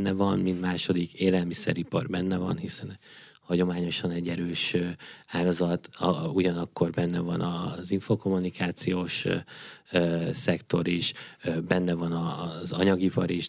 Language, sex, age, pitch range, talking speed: Hungarian, male, 20-39, 85-95 Hz, 105 wpm